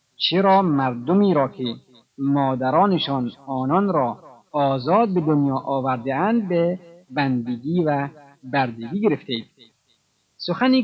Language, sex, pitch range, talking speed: Persian, male, 135-190 Hz, 95 wpm